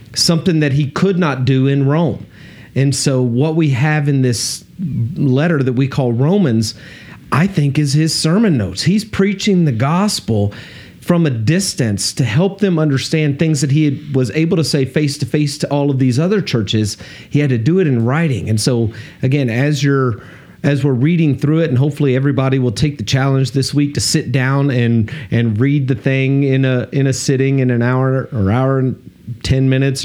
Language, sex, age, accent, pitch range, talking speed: English, male, 40-59, American, 125-160 Hz, 200 wpm